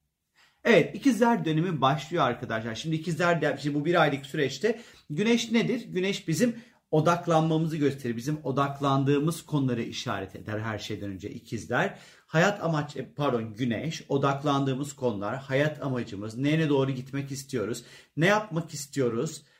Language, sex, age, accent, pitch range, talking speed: Turkish, male, 40-59, native, 125-180 Hz, 130 wpm